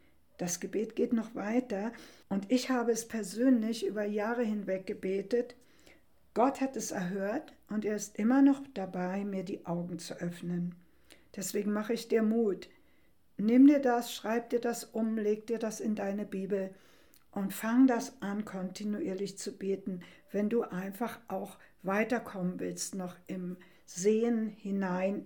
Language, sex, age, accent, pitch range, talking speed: German, female, 60-79, German, 190-235 Hz, 150 wpm